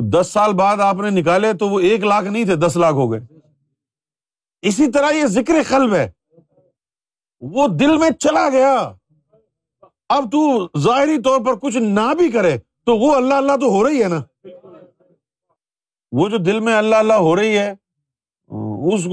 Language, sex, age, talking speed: Urdu, male, 50-69, 175 wpm